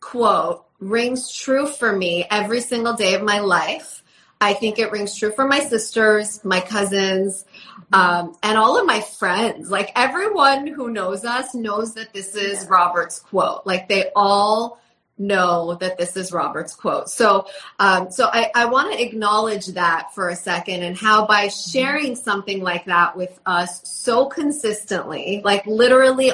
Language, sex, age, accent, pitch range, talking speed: English, female, 30-49, American, 185-225 Hz, 165 wpm